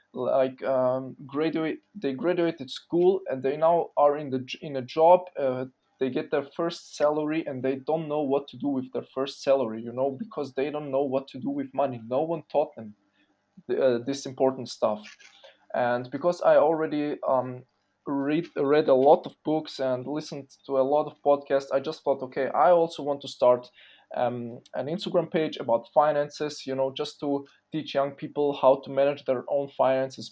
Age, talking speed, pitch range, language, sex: 20-39, 190 wpm, 130-160 Hz, English, male